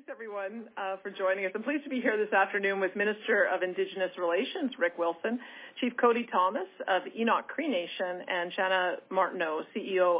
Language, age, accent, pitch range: English, 40-59, American, 190-245 Hz